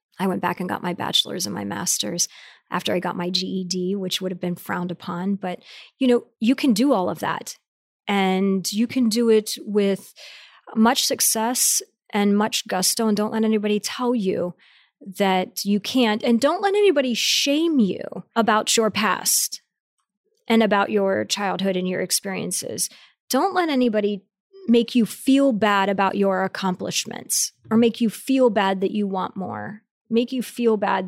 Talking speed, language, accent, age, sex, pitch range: 170 wpm, English, American, 30-49, female, 200-255 Hz